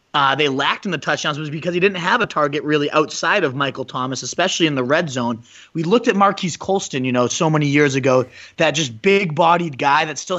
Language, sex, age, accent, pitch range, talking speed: English, male, 30-49, American, 135-165 Hz, 235 wpm